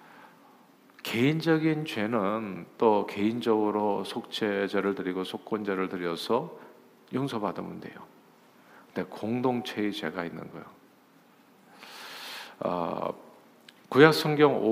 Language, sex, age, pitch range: Korean, male, 50-69, 100-130 Hz